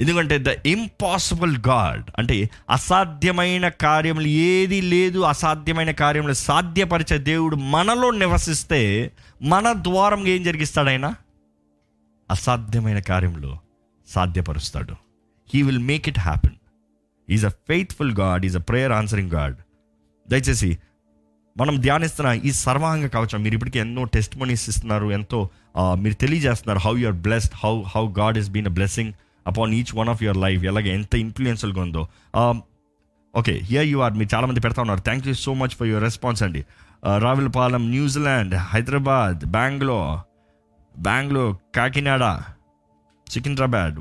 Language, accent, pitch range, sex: Telugu, native, 95-135 Hz, male